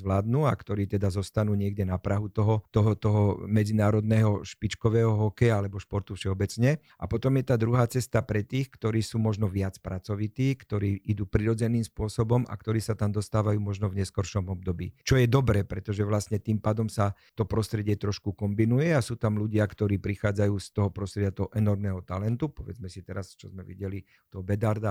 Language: Slovak